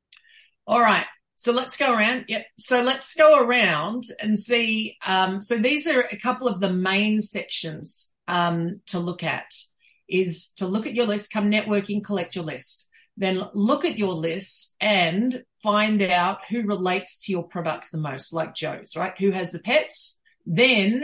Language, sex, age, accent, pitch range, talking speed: English, female, 40-59, Australian, 175-215 Hz, 175 wpm